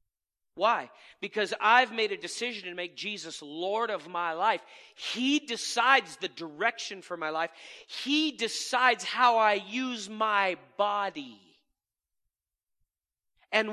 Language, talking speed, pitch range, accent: English, 120 wpm, 175-235 Hz, American